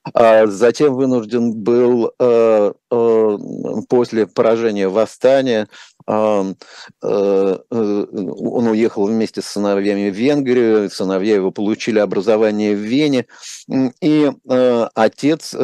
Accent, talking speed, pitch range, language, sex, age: native, 80 wpm, 110-135 Hz, Russian, male, 50-69